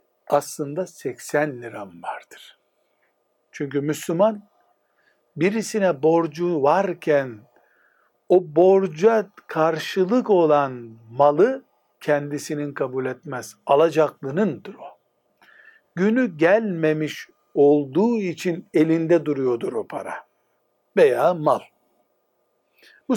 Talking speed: 80 wpm